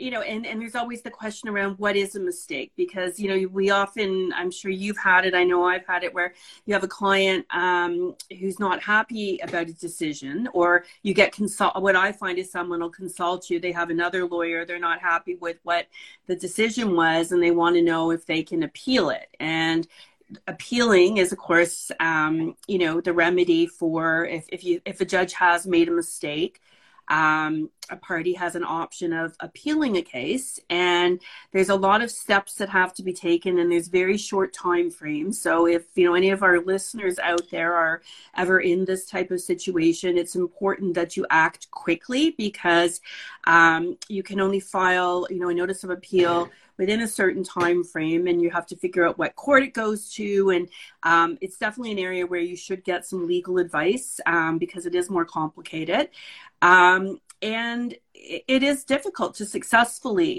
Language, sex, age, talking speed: English, female, 30-49, 200 wpm